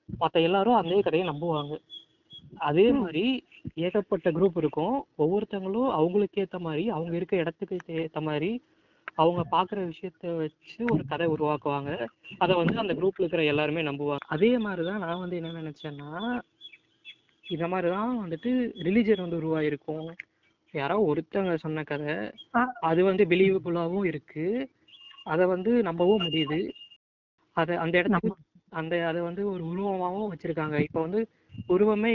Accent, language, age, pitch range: native, Tamil, 20-39, 155-195 Hz